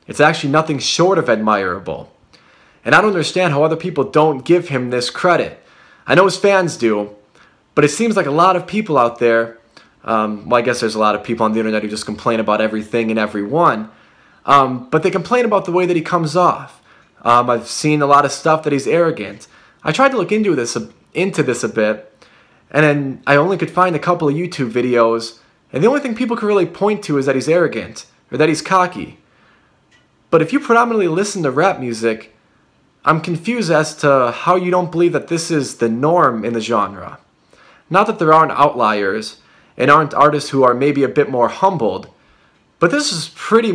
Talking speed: 215 wpm